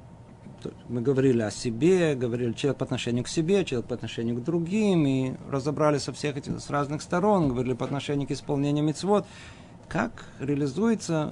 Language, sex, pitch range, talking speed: Russian, male, 130-175 Hz, 165 wpm